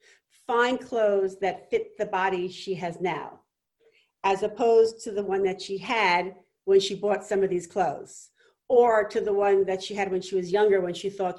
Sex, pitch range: female, 190-240 Hz